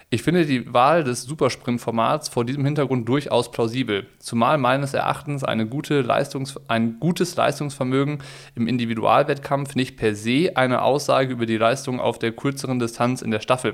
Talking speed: 160 wpm